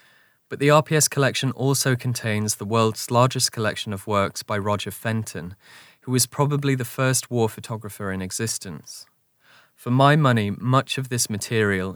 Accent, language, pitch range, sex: British, English, 105-130 Hz, male